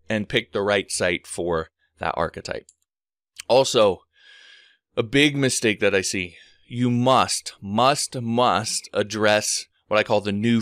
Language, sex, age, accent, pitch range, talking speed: English, male, 20-39, American, 110-145 Hz, 140 wpm